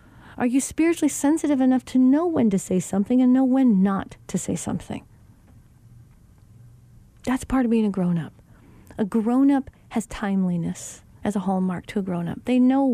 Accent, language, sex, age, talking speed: American, English, female, 40-59, 180 wpm